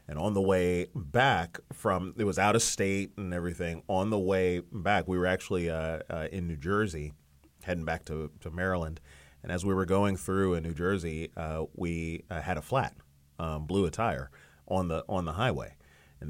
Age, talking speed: 30-49, 200 wpm